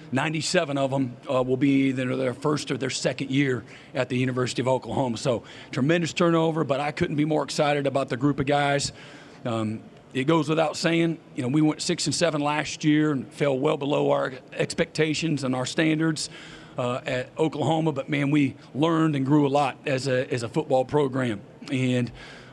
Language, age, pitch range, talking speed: English, 40-59, 135-155 Hz, 195 wpm